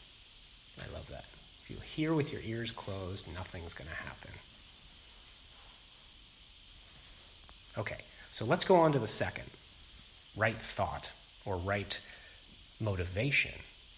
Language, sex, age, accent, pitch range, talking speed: English, male, 30-49, American, 90-115 Hz, 115 wpm